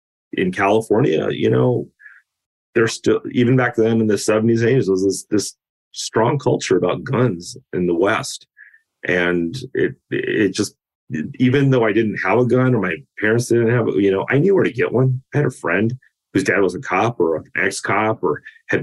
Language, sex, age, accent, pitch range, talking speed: English, male, 30-49, American, 85-110 Hz, 200 wpm